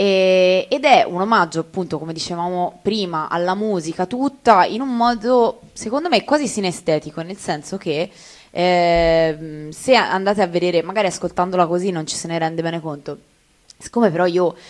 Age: 20-39